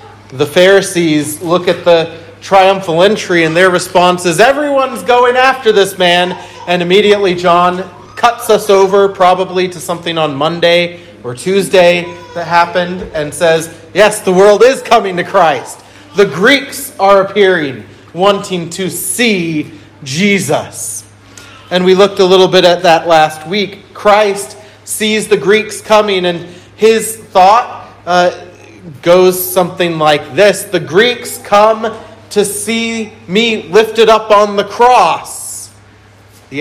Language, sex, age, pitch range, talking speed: English, male, 40-59, 165-215 Hz, 135 wpm